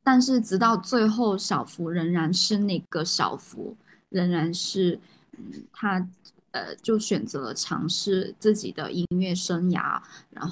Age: 10-29